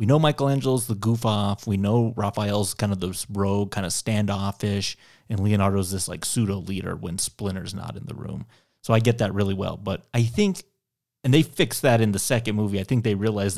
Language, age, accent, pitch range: English, 30-49, American, 100-125 Hz